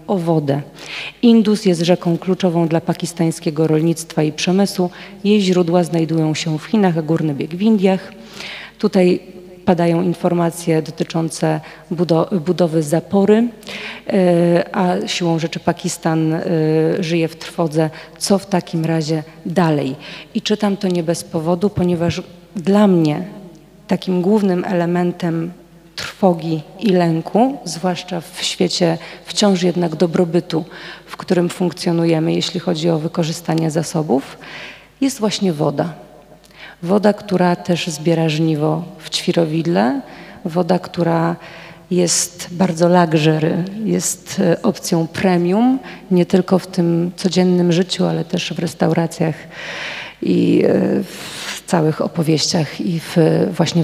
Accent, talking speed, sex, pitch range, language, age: native, 115 wpm, female, 165-185 Hz, Polish, 40-59